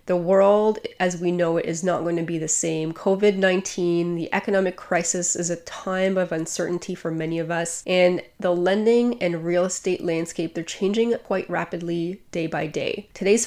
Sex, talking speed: female, 185 wpm